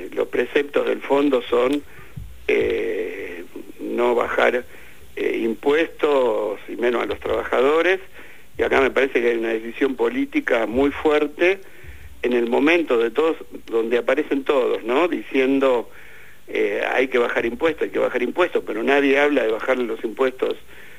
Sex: male